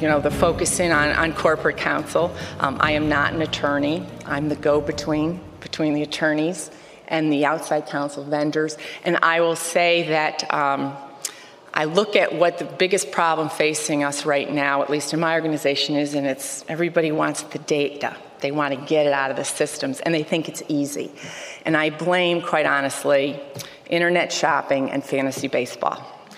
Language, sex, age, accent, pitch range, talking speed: English, female, 40-59, American, 145-175 Hz, 180 wpm